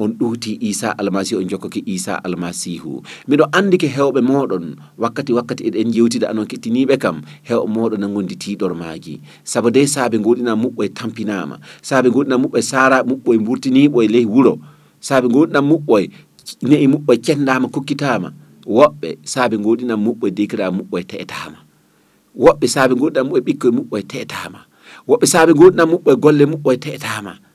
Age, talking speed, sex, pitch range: 40-59, 160 wpm, male, 100-135 Hz